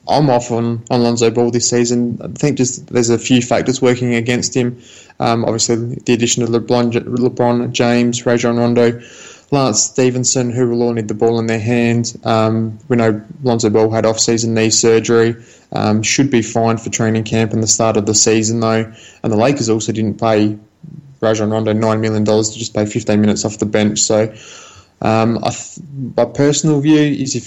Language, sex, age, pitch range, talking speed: English, male, 20-39, 110-125 Hz, 190 wpm